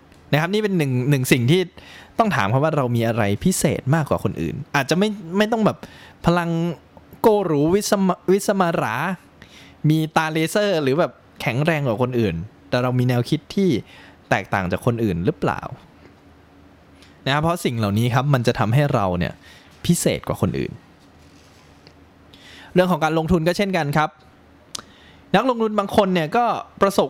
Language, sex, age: Thai, male, 20-39